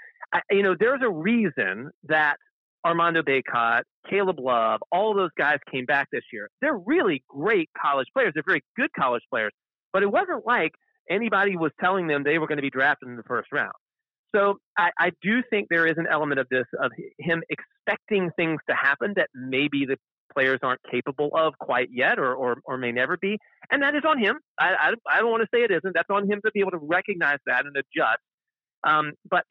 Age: 40-59